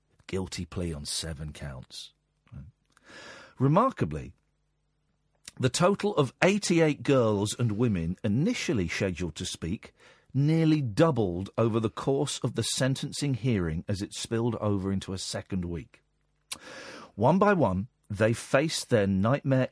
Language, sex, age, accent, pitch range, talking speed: English, male, 50-69, British, 100-140 Hz, 125 wpm